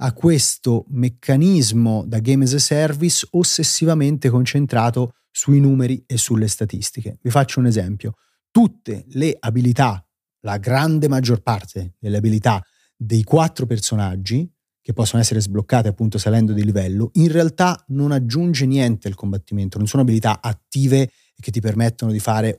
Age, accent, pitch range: 30-49, native, 110-150 Hz